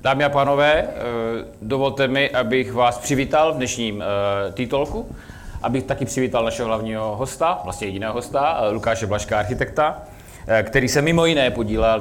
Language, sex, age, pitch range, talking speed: Czech, male, 30-49, 100-130 Hz, 140 wpm